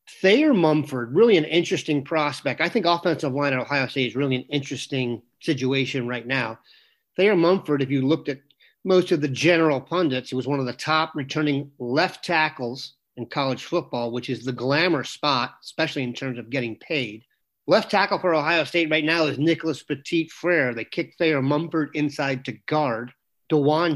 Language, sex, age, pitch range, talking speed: English, male, 40-59, 130-155 Hz, 185 wpm